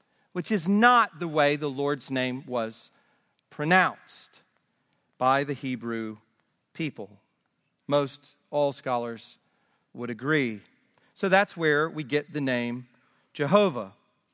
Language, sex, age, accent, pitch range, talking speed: English, male, 40-59, American, 155-210 Hz, 115 wpm